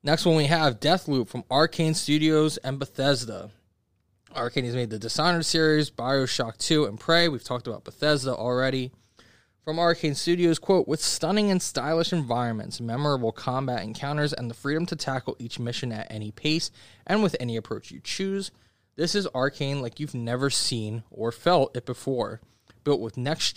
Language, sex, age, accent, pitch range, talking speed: English, male, 20-39, American, 115-155 Hz, 170 wpm